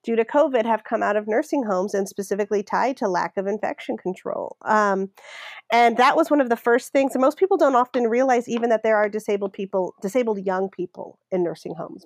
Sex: female